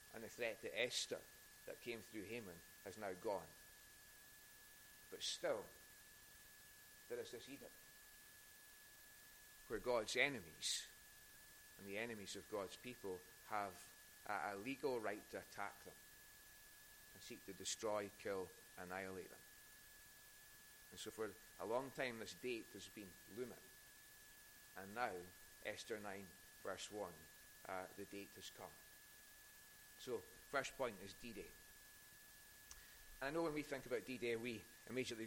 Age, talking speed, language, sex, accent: 30-49, 130 wpm, English, male, British